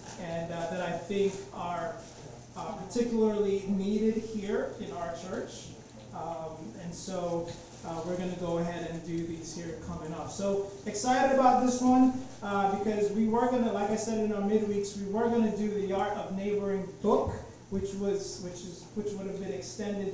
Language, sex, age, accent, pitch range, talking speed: English, male, 30-49, American, 175-215 Hz, 190 wpm